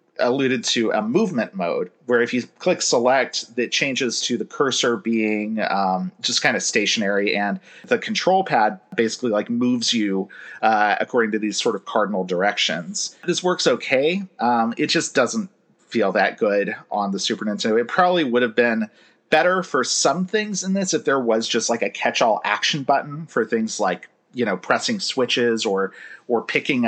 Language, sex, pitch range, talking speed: English, male, 115-170 Hz, 185 wpm